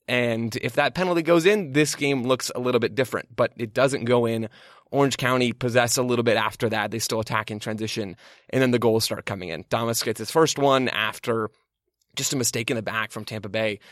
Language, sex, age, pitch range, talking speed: English, male, 20-39, 110-130 Hz, 230 wpm